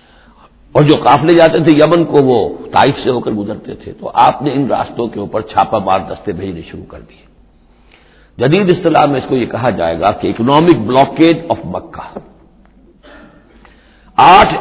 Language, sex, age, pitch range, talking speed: Urdu, male, 60-79, 105-150 Hz, 175 wpm